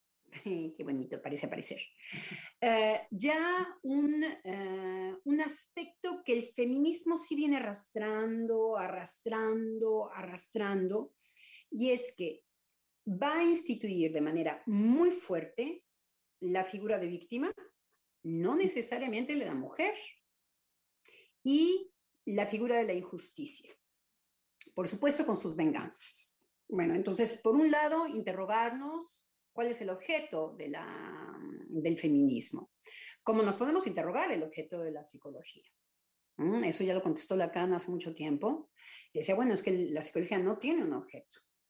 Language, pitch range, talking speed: Spanish, 180-285 Hz, 130 wpm